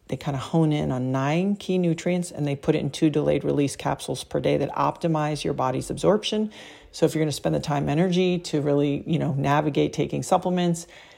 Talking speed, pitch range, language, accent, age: 215 wpm, 140-165 Hz, English, American, 40-59